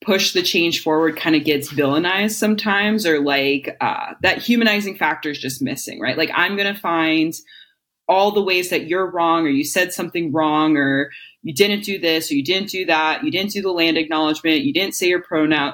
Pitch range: 155-200 Hz